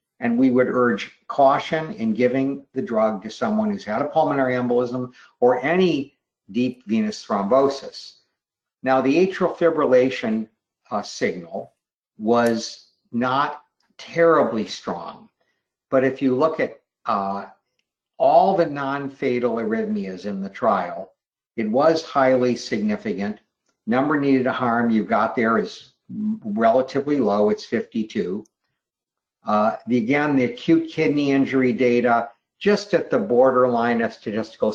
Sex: male